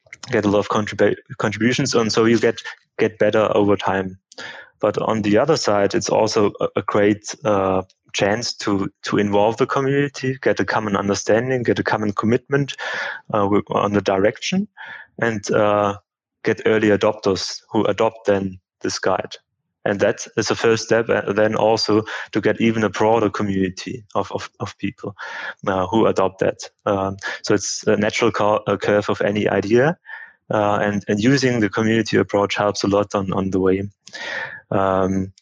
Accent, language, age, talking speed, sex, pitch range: German, English, 20-39, 170 wpm, male, 100-115 Hz